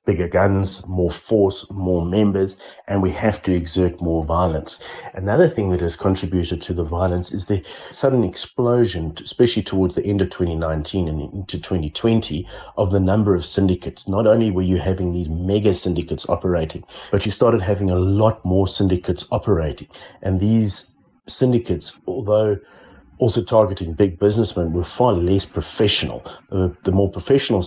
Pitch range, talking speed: 85-105 Hz, 160 wpm